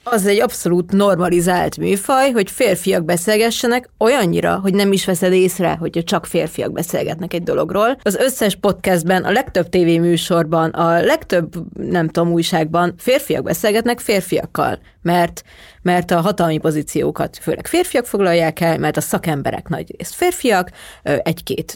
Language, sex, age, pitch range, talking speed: Hungarian, female, 30-49, 165-200 Hz, 140 wpm